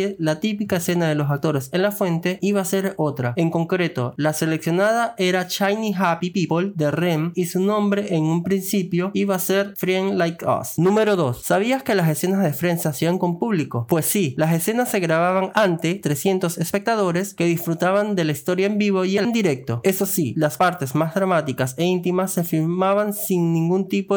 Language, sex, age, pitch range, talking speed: Spanish, male, 20-39, 160-200 Hz, 195 wpm